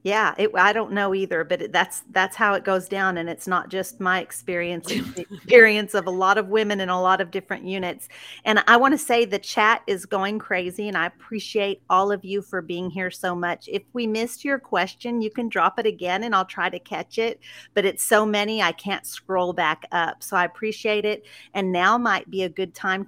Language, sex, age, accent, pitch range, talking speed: English, female, 40-59, American, 185-220 Hz, 235 wpm